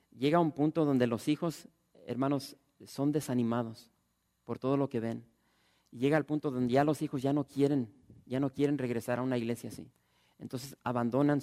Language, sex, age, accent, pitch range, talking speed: English, male, 40-59, Mexican, 120-155 Hz, 180 wpm